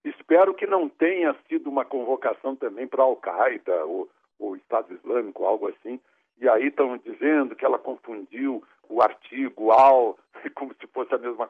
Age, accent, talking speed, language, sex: 60-79, Brazilian, 155 wpm, Portuguese, male